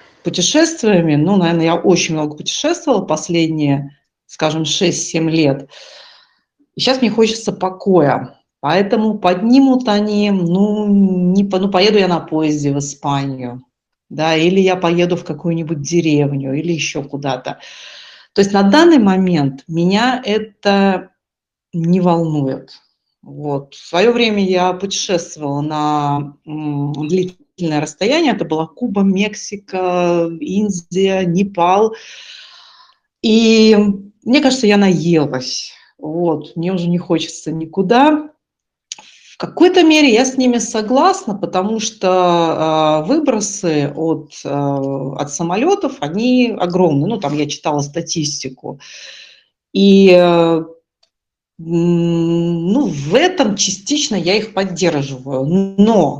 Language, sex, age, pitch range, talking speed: Russian, female, 40-59, 155-210 Hz, 110 wpm